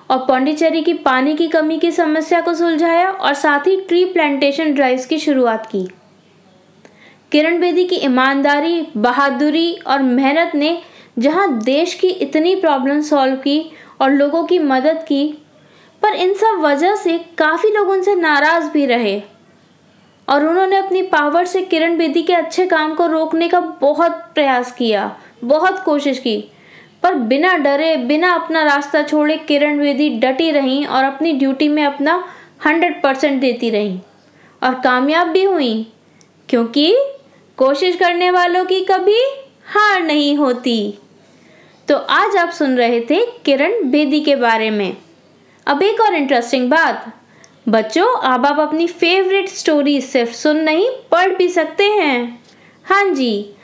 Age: 20-39